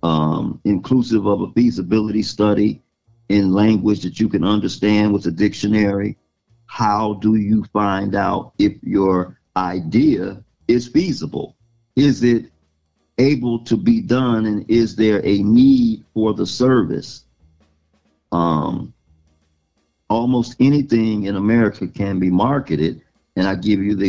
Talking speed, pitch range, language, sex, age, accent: 130 wpm, 95-120 Hz, English, male, 50-69, American